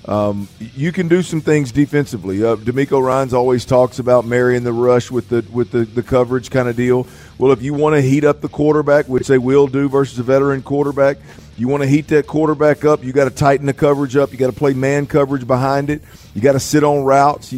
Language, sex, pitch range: English, male, 120-140 Hz